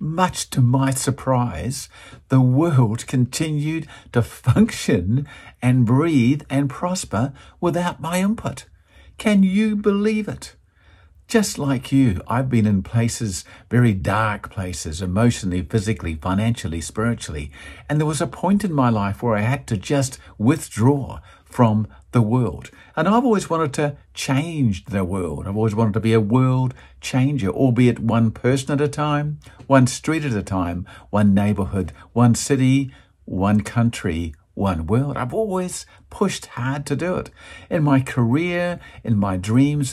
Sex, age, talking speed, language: male, 50-69, 150 wpm, English